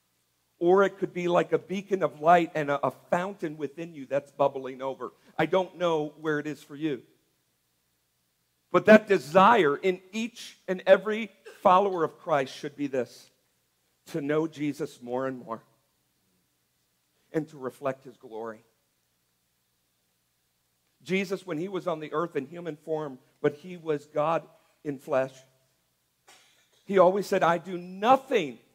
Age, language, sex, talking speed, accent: 50-69, English, male, 150 wpm, American